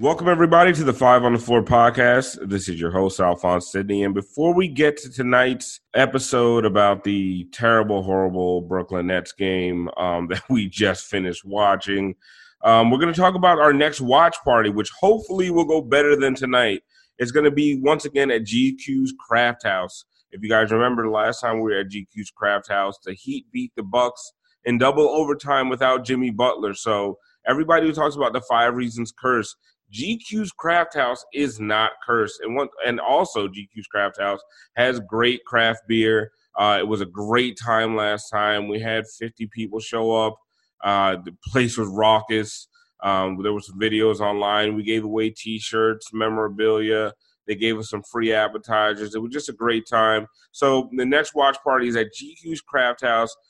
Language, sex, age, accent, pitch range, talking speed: English, male, 30-49, American, 105-135 Hz, 185 wpm